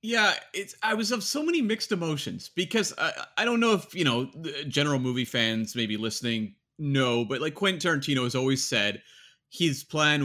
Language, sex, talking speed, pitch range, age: English, male, 195 wpm, 120-175 Hz, 30-49